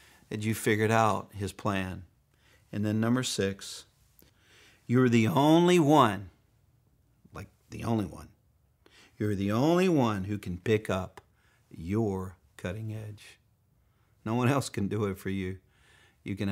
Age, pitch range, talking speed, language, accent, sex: 50-69, 95-115 Hz, 140 wpm, English, American, male